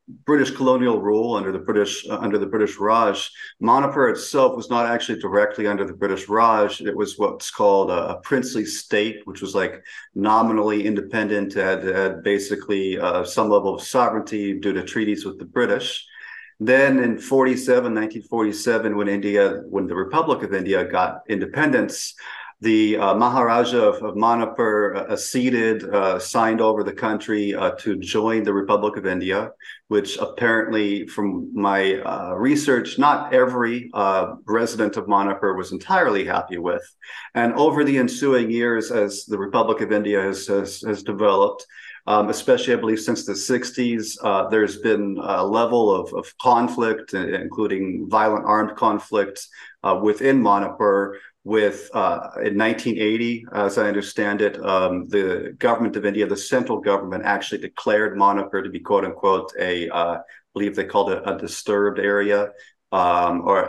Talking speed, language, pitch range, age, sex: 160 wpm, English, 100-115 Hz, 50-69, male